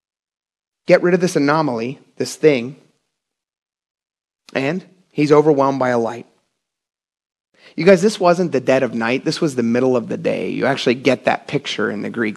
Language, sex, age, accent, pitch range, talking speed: English, male, 30-49, American, 140-190 Hz, 175 wpm